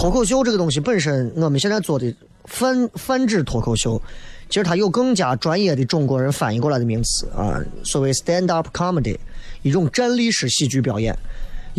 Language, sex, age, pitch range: Chinese, male, 30-49, 130-195 Hz